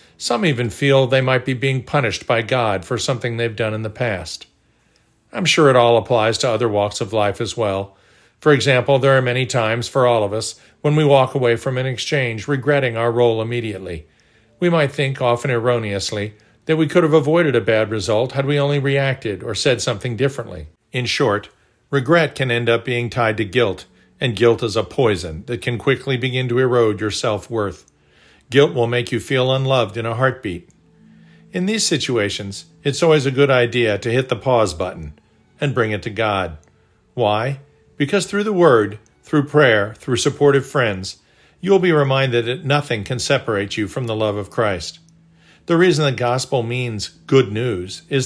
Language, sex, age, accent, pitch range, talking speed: English, male, 50-69, American, 110-140 Hz, 190 wpm